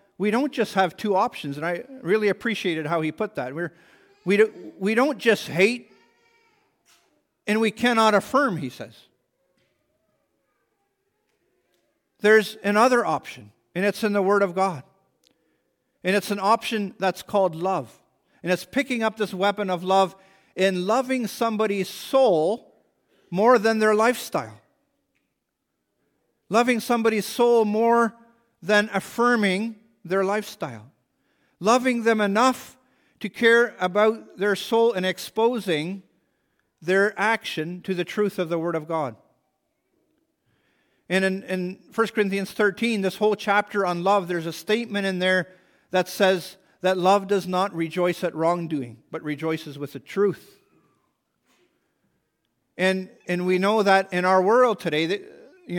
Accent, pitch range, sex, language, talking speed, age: American, 180-225 Hz, male, English, 140 wpm, 50-69